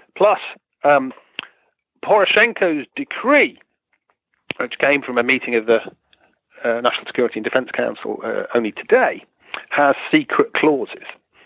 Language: English